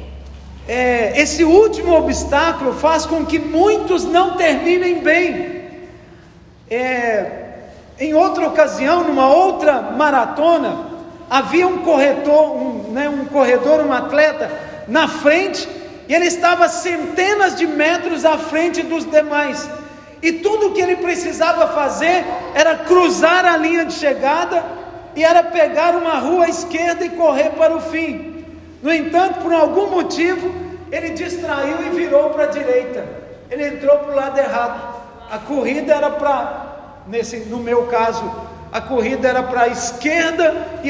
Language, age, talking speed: Portuguese, 50-69, 140 wpm